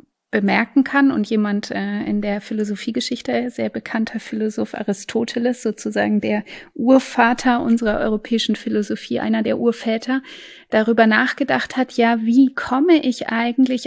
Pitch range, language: 220-275 Hz, German